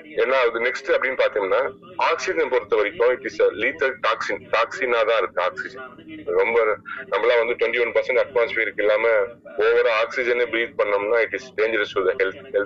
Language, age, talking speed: Tamil, 30-49, 55 wpm